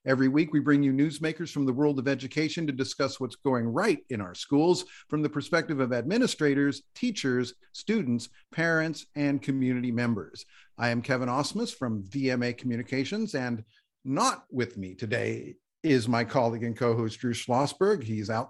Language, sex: English, male